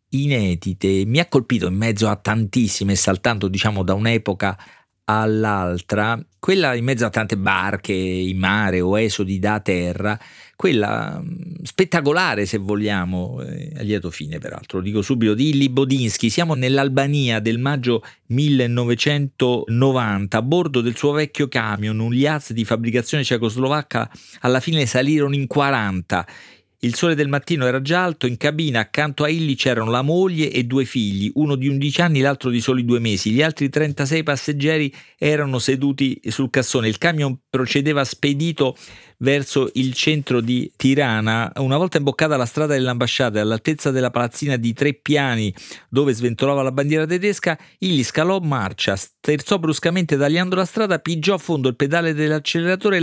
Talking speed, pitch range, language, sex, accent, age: 150 wpm, 115-150 Hz, Italian, male, native, 40-59